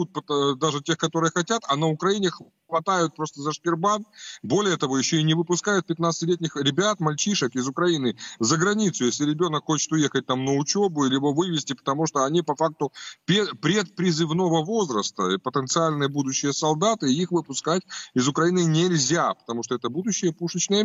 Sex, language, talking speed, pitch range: male, Russian, 160 wpm, 150-185 Hz